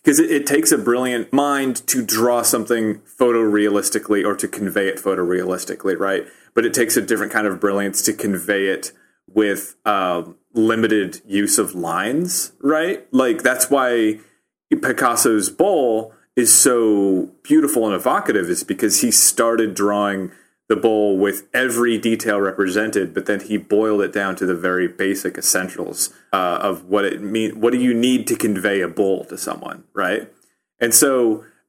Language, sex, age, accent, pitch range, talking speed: English, male, 30-49, American, 105-125 Hz, 165 wpm